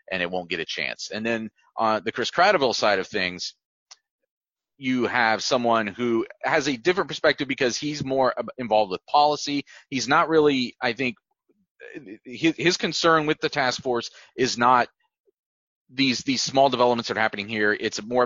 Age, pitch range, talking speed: 30-49, 110-150 Hz, 175 wpm